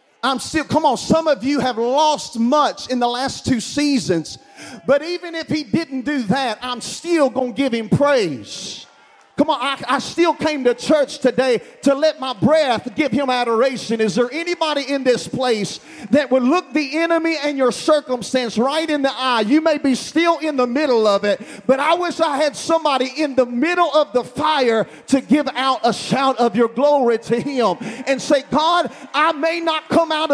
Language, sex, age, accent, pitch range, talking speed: English, male, 40-59, American, 225-310 Hz, 200 wpm